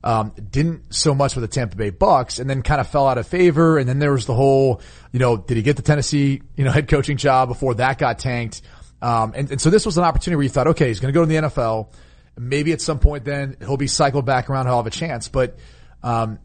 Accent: American